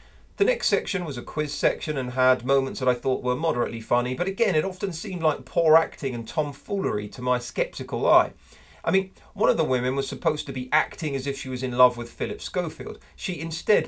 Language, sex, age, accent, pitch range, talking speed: English, male, 40-59, British, 130-190 Hz, 225 wpm